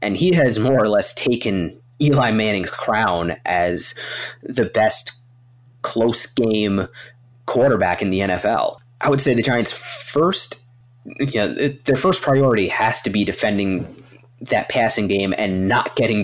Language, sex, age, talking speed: English, male, 30-49, 150 wpm